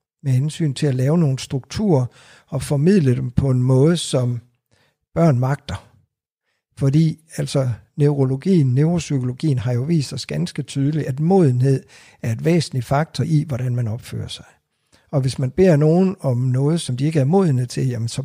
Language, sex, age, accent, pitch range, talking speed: Danish, male, 60-79, native, 125-155 Hz, 165 wpm